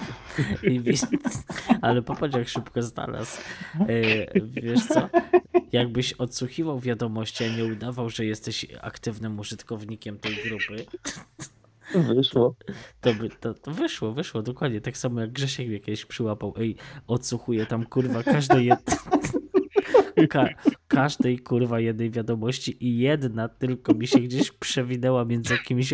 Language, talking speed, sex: Polish, 130 wpm, male